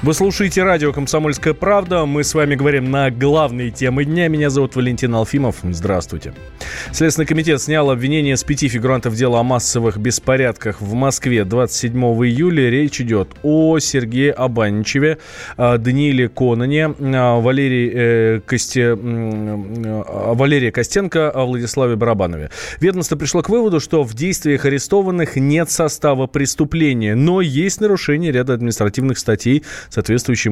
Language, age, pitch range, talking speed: Russian, 20-39, 115-145 Hz, 120 wpm